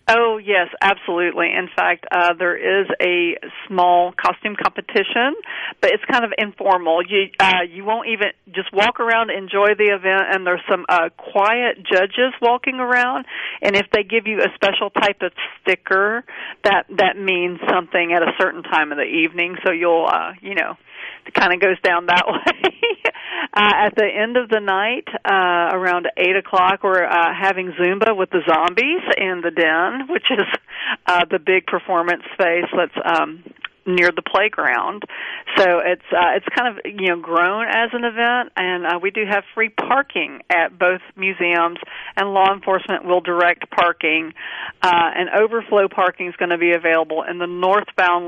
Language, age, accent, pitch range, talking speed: English, 40-59, American, 175-205 Hz, 175 wpm